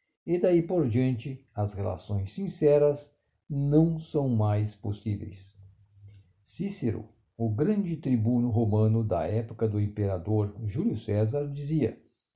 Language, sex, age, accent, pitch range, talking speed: Portuguese, male, 60-79, Brazilian, 110-150 Hz, 110 wpm